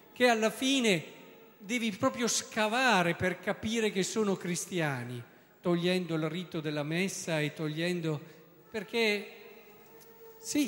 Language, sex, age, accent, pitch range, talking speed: Italian, male, 50-69, native, 150-200 Hz, 110 wpm